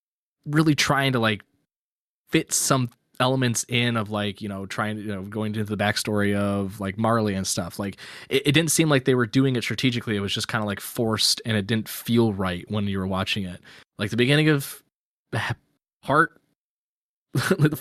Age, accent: 20-39, American